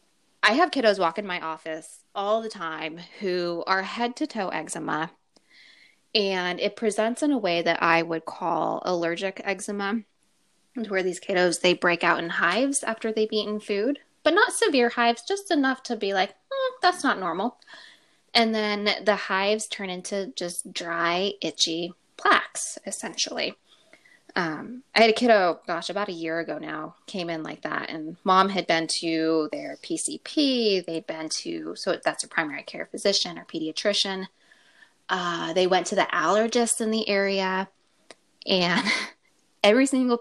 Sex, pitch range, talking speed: female, 175-235 Hz, 165 wpm